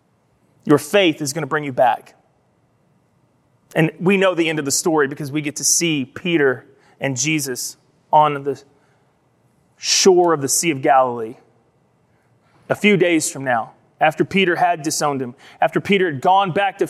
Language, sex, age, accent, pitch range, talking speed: English, male, 30-49, American, 160-265 Hz, 170 wpm